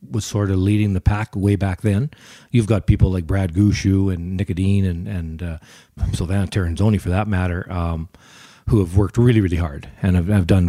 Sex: male